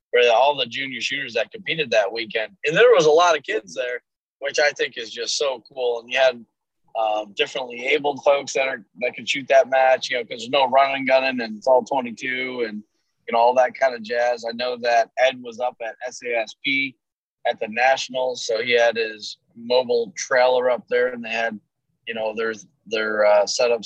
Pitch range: 115-165 Hz